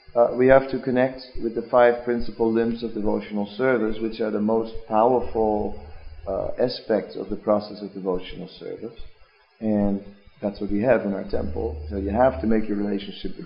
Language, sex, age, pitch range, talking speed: English, male, 40-59, 100-130 Hz, 185 wpm